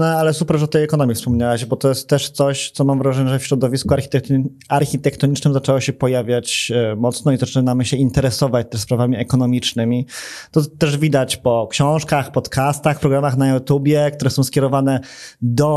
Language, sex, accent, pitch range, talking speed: Polish, male, native, 125-145 Hz, 165 wpm